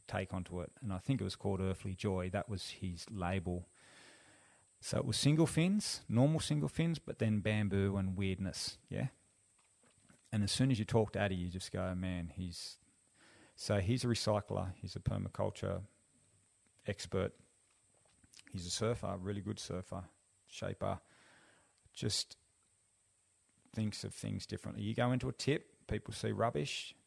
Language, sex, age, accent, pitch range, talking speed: English, male, 30-49, Australian, 95-110 Hz, 155 wpm